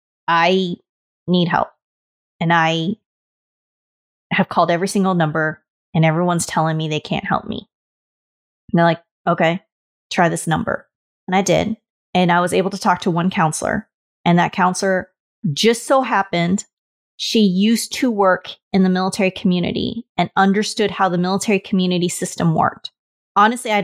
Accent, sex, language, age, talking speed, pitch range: American, female, English, 30-49, 155 wpm, 170-195 Hz